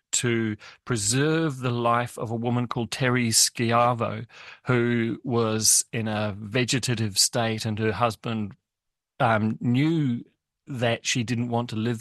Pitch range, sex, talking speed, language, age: 110-130 Hz, male, 135 wpm, English, 40-59